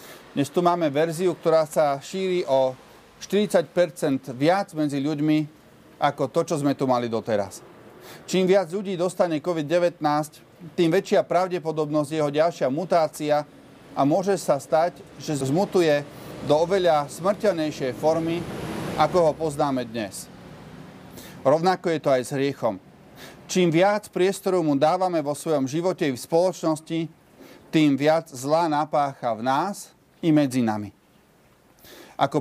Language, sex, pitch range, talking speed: Slovak, male, 145-180 Hz, 130 wpm